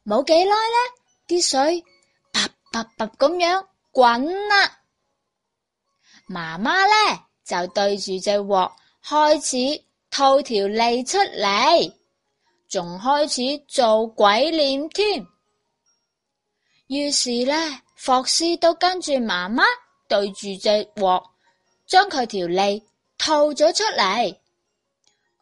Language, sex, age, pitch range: Chinese, female, 20-39, 220-345 Hz